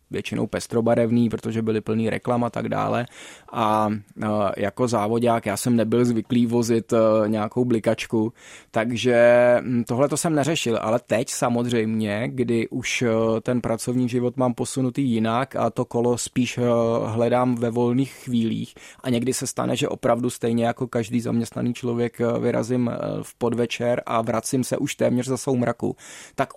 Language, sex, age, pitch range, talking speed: Czech, male, 20-39, 115-125 Hz, 150 wpm